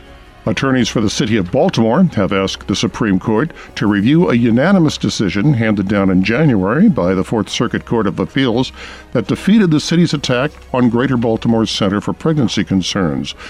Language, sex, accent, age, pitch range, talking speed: English, male, American, 60-79, 100-135 Hz, 175 wpm